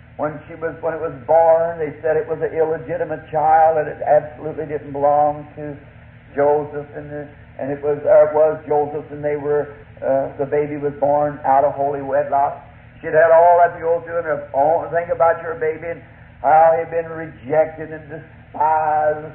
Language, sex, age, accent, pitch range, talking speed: English, male, 60-79, American, 145-165 Hz, 195 wpm